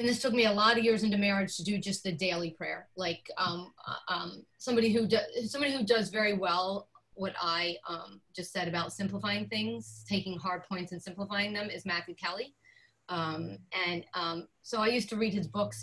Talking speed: 205 wpm